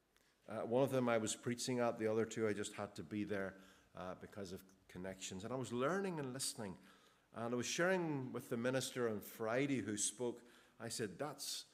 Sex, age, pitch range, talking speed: male, 50-69, 110-140 Hz, 210 wpm